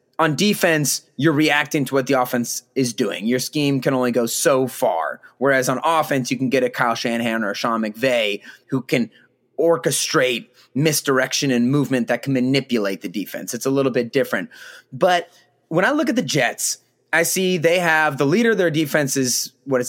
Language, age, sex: English, 30-49, male